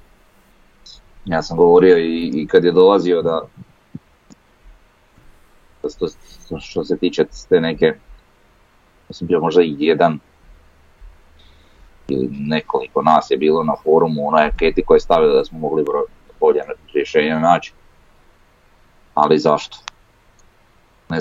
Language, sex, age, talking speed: Croatian, male, 30-49, 120 wpm